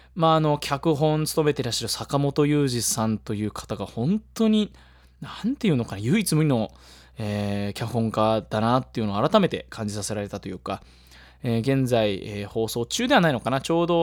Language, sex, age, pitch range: Japanese, male, 20-39, 95-135 Hz